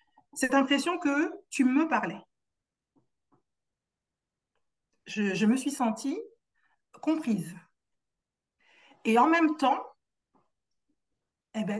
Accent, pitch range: French, 225-310 Hz